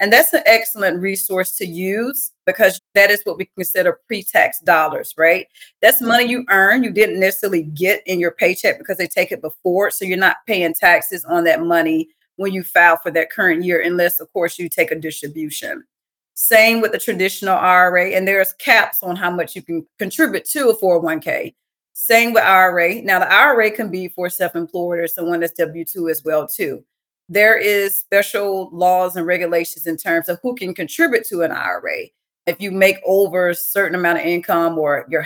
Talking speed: 195 wpm